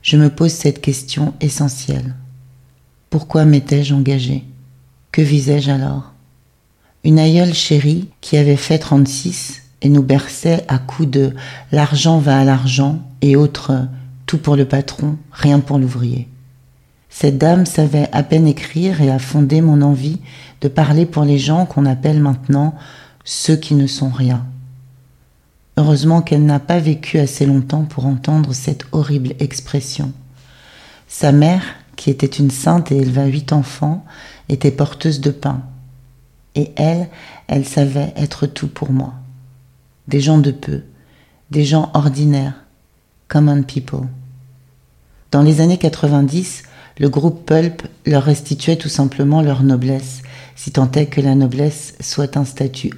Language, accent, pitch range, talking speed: English, French, 130-150 Hz, 145 wpm